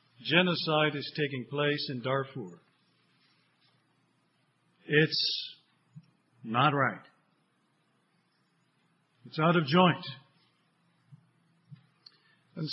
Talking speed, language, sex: 65 wpm, English, male